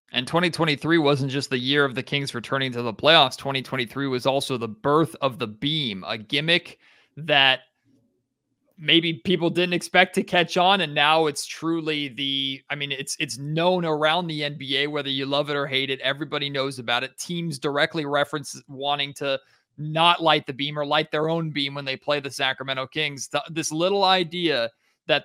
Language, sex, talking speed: English, male, 190 wpm